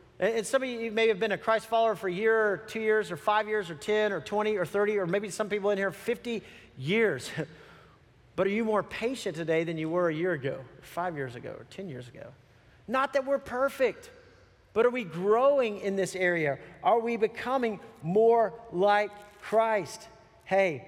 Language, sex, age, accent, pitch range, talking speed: English, male, 40-59, American, 180-250 Hz, 205 wpm